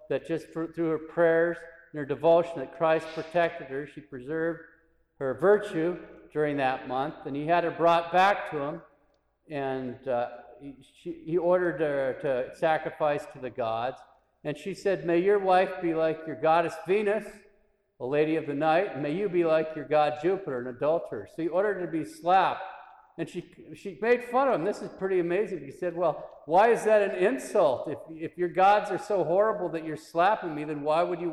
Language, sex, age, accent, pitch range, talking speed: English, male, 50-69, American, 150-185 Hz, 205 wpm